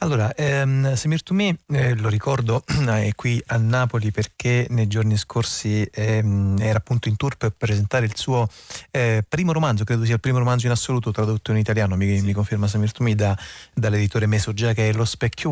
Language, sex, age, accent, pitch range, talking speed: Italian, male, 30-49, native, 105-125 Hz, 185 wpm